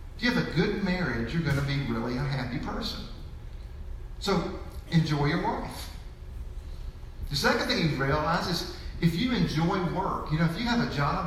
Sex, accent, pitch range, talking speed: male, American, 120-180 Hz, 185 wpm